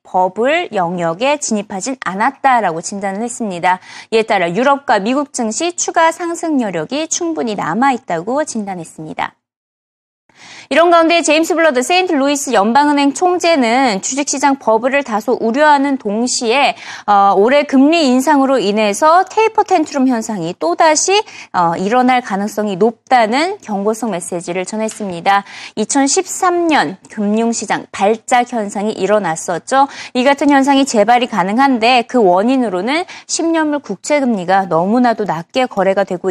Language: Korean